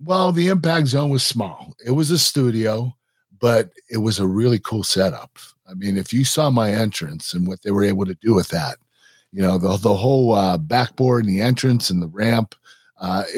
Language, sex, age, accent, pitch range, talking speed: English, male, 50-69, American, 105-135 Hz, 210 wpm